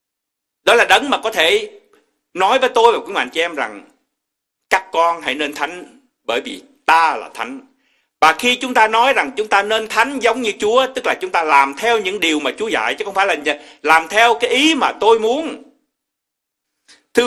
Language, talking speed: Vietnamese, 210 wpm